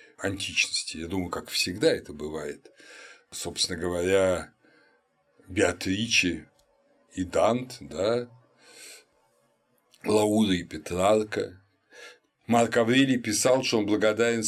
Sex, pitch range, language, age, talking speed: male, 95-115 Hz, Russian, 60-79, 90 wpm